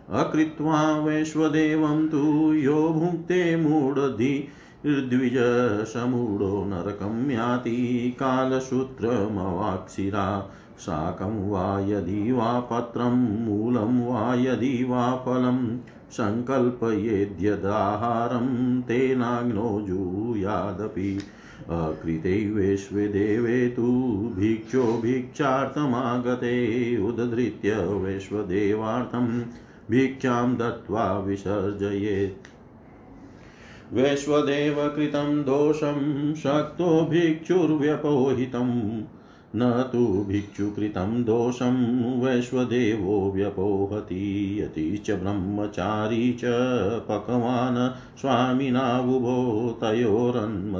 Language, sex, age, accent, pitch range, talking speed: Hindi, male, 50-69, native, 100-130 Hz, 45 wpm